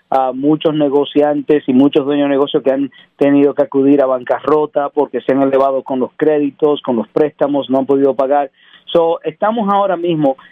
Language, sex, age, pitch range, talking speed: Spanish, male, 40-59, 140-160 Hz, 190 wpm